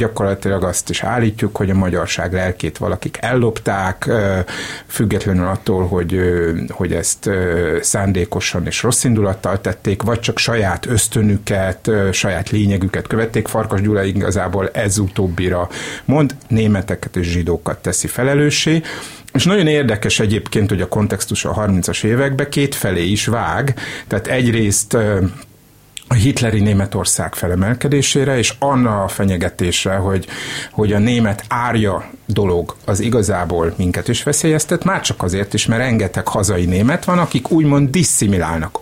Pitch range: 95-120 Hz